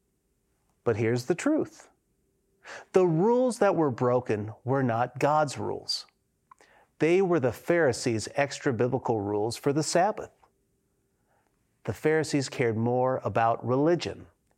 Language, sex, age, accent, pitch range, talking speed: English, male, 40-59, American, 125-210 Hz, 115 wpm